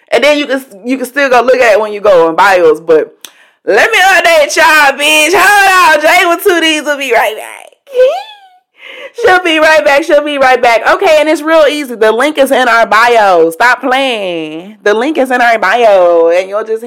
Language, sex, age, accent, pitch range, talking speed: English, female, 30-49, American, 235-330 Hz, 215 wpm